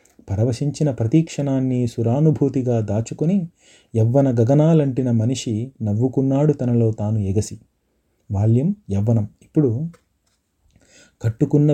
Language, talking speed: Telugu, 75 wpm